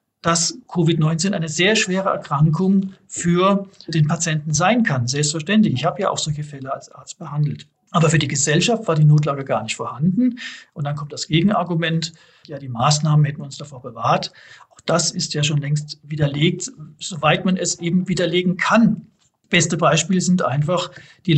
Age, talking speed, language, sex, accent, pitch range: 40-59, 175 wpm, German, male, German, 150-175 Hz